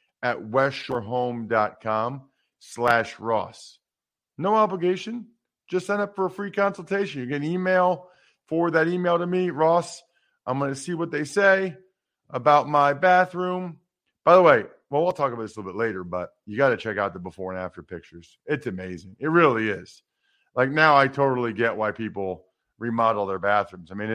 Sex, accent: male, American